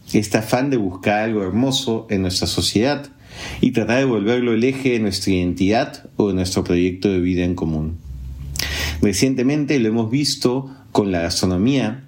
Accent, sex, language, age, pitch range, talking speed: Argentinian, male, Spanish, 40-59, 95-125 Hz, 165 wpm